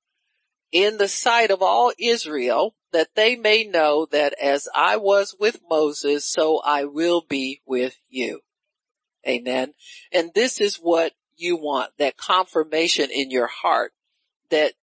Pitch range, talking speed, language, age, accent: 145-225 Hz, 140 wpm, English, 50-69, American